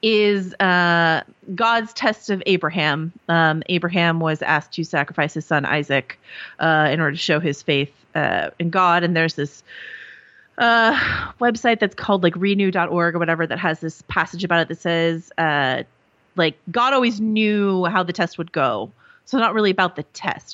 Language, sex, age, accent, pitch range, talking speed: English, female, 30-49, American, 165-210 Hz, 175 wpm